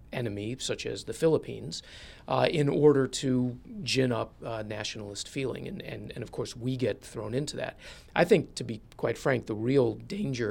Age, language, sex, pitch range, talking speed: 30-49, English, male, 105-130 Hz, 190 wpm